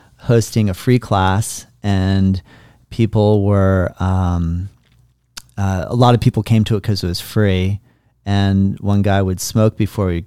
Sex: male